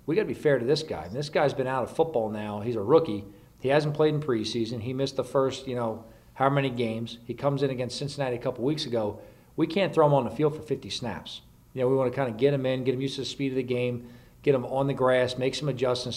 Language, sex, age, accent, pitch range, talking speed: English, male, 40-59, American, 120-135 Hz, 295 wpm